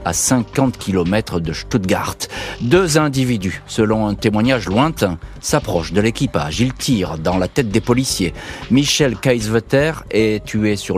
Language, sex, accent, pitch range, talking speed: French, male, French, 95-125 Hz, 140 wpm